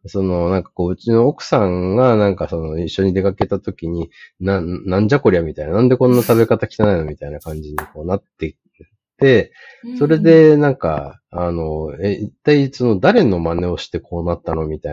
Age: 30-49